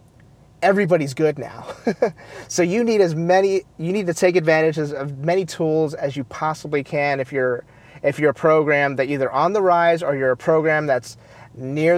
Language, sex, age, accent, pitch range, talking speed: English, male, 30-49, American, 135-170 Hz, 190 wpm